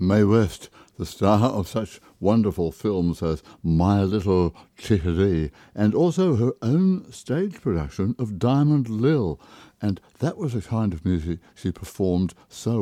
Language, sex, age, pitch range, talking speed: English, male, 60-79, 85-115 Hz, 145 wpm